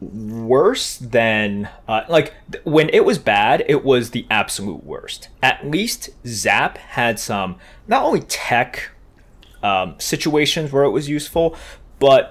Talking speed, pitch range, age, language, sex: 140 wpm, 110-140 Hz, 20-39, English, male